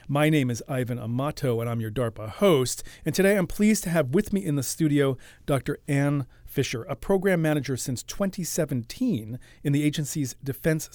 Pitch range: 120-155 Hz